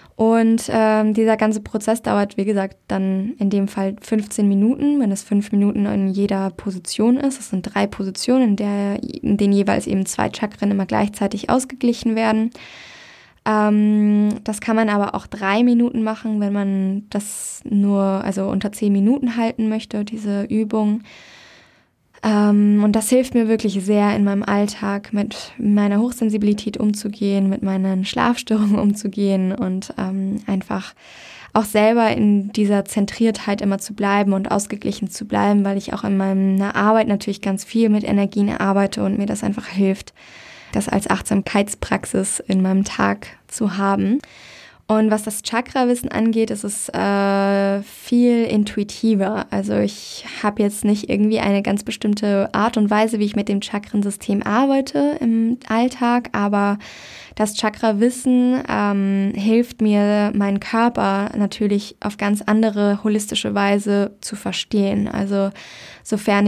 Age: 10-29